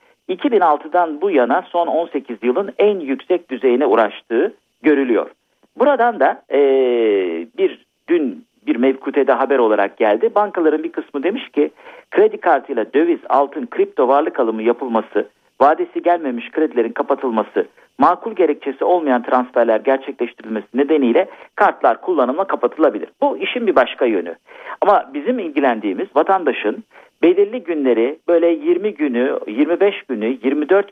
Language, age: Turkish, 50-69